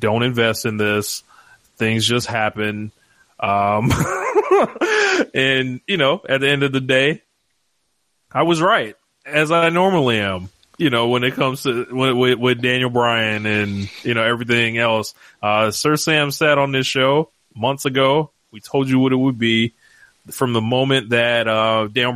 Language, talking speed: English, 165 wpm